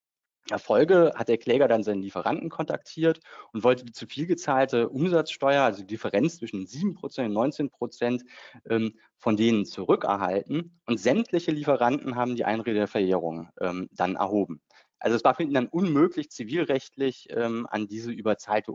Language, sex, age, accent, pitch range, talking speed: German, male, 30-49, German, 105-145 Hz, 155 wpm